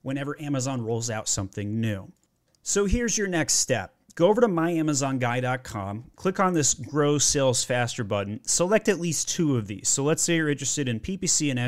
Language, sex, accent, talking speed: English, male, American, 185 wpm